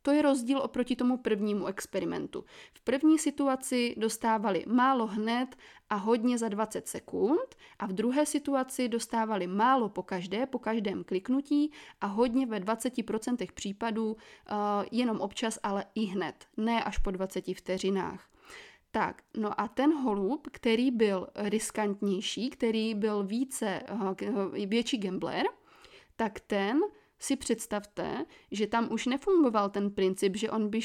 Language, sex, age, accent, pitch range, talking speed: Czech, female, 20-39, native, 210-260 Hz, 135 wpm